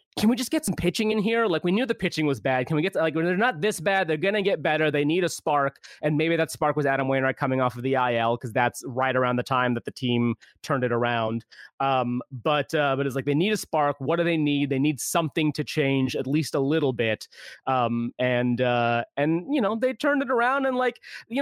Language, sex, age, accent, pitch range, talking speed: English, male, 30-49, American, 125-180 Hz, 265 wpm